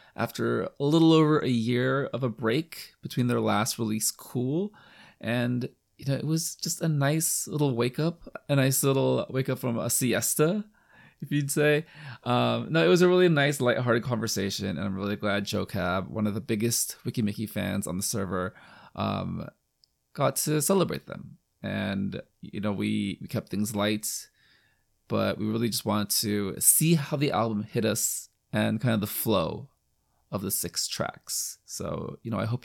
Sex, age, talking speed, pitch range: male, 20-39, 180 wpm, 105-140 Hz